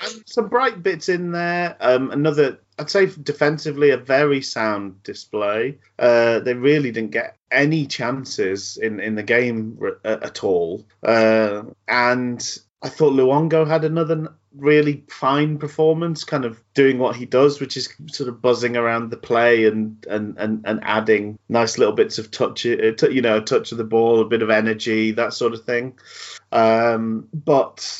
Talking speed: 165 wpm